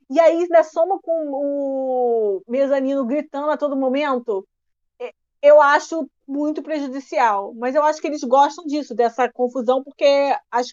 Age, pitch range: 20-39, 245-290 Hz